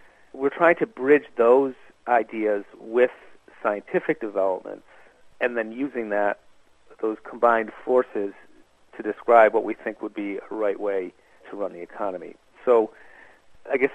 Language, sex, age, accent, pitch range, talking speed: English, male, 40-59, American, 105-130 Hz, 140 wpm